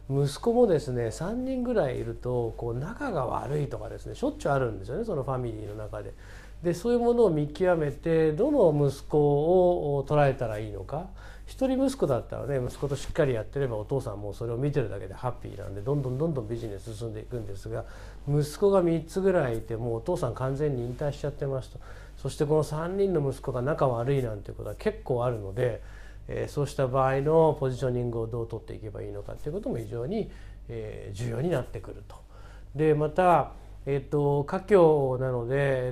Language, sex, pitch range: Japanese, male, 115-160 Hz